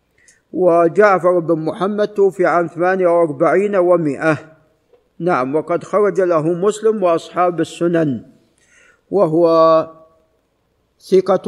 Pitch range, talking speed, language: 160-200 Hz, 85 wpm, Arabic